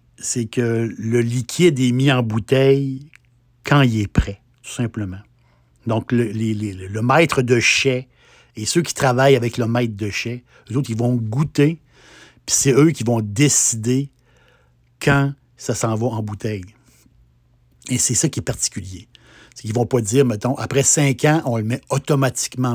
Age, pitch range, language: 60-79, 110-135 Hz, French